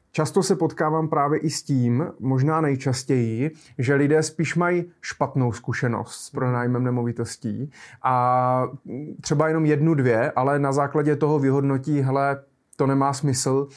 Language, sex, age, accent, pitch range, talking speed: Czech, male, 30-49, native, 130-155 Hz, 140 wpm